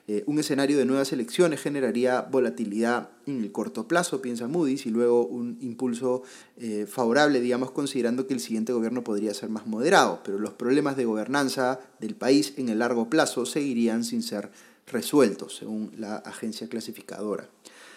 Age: 30-49